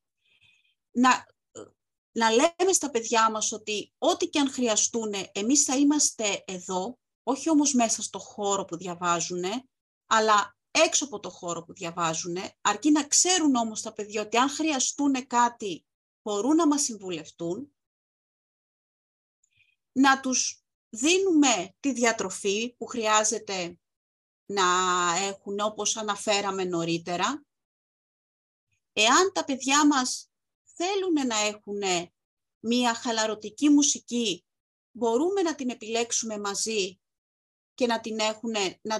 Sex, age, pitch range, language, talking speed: female, 30-49, 200-280 Hz, Greek, 115 wpm